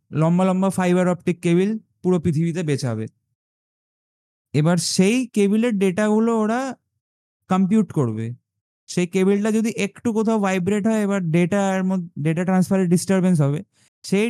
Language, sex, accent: Bengali, male, native